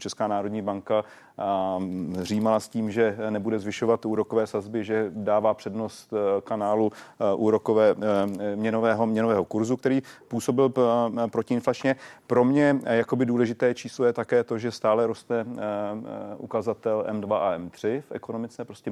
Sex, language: male, Czech